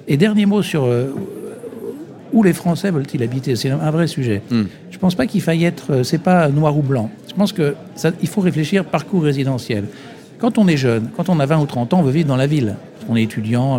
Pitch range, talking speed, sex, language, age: 130-185 Hz, 220 wpm, male, French, 60-79